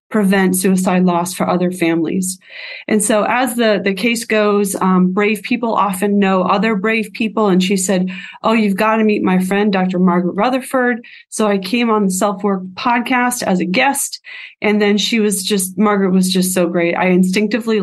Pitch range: 185-220 Hz